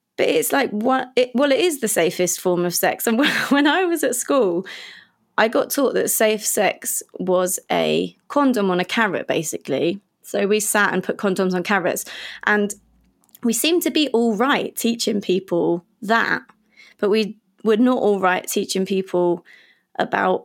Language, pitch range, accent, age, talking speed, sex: English, 190-255 Hz, British, 20-39, 175 wpm, female